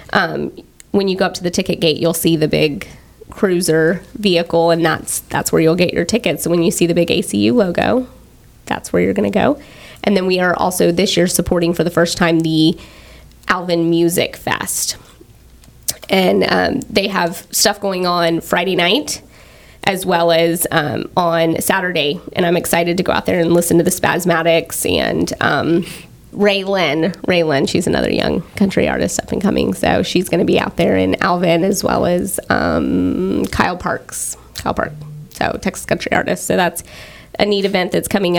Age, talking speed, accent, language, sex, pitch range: 20-39, 190 wpm, American, English, female, 165-200 Hz